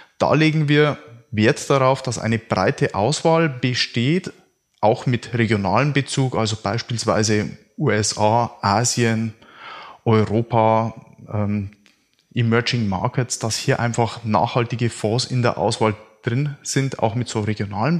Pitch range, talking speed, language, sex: 110-135 Hz, 120 wpm, German, male